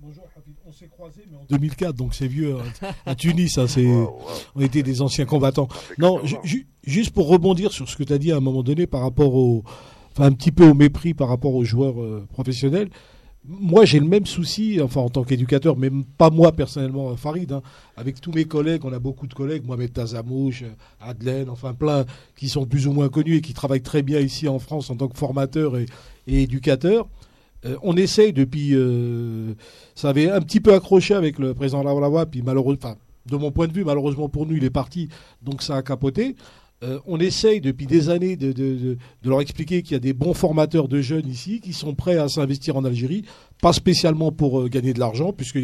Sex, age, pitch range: male, 50-69, 130-165 Hz